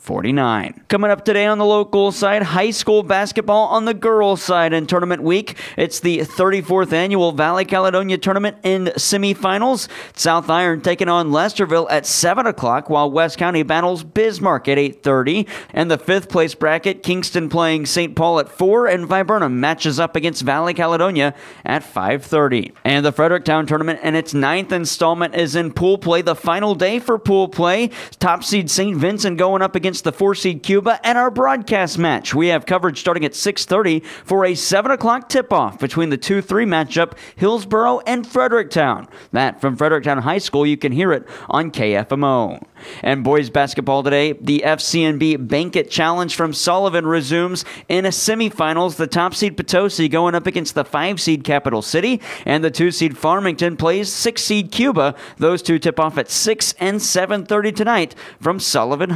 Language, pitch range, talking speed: English, 155-195 Hz, 165 wpm